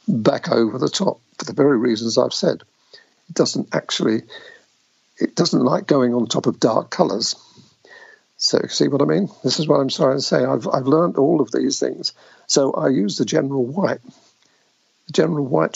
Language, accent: English, British